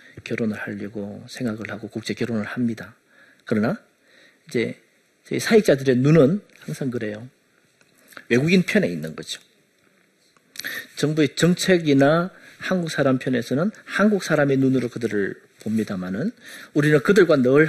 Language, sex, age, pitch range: Korean, male, 40-59, 115-165 Hz